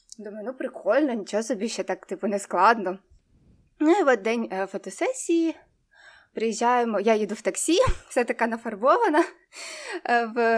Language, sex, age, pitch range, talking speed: Ukrainian, female, 20-39, 210-295 Hz, 135 wpm